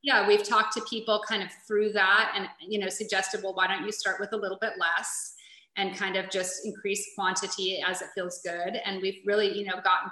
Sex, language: female, English